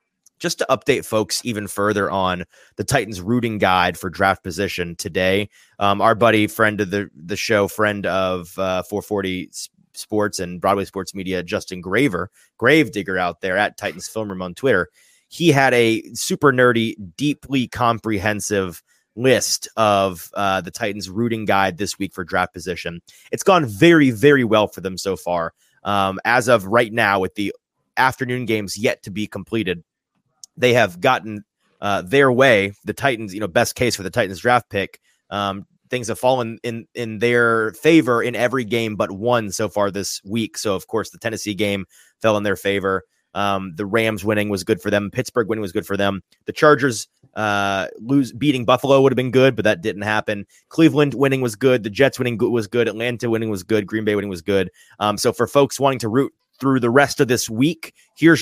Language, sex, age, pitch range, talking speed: English, male, 30-49, 100-120 Hz, 195 wpm